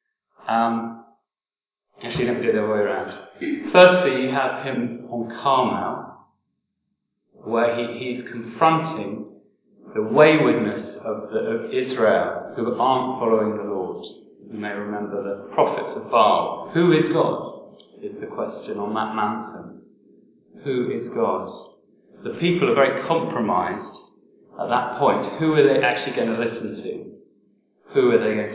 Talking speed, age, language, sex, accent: 145 wpm, 30-49, English, male, British